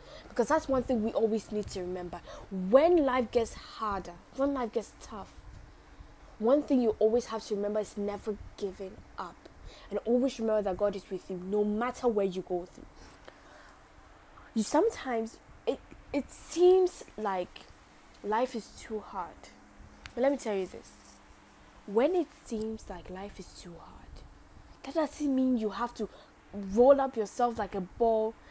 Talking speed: 165 wpm